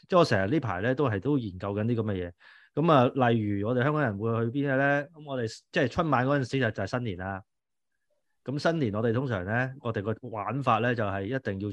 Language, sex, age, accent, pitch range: Chinese, male, 20-39, native, 110-155 Hz